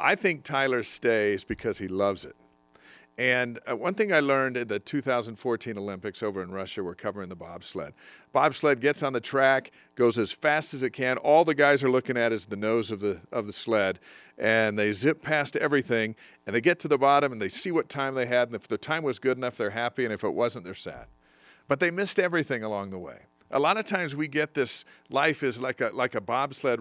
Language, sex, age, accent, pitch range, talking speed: English, male, 50-69, American, 110-145 Hz, 230 wpm